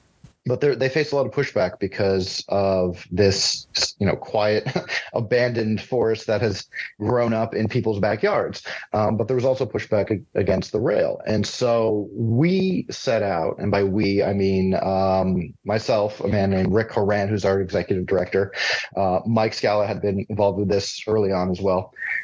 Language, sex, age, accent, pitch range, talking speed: English, male, 30-49, American, 95-115 Hz, 175 wpm